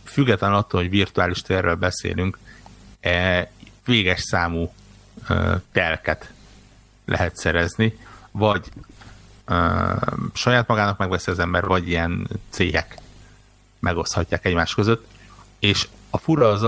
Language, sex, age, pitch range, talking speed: Hungarian, male, 60-79, 90-105 Hz, 95 wpm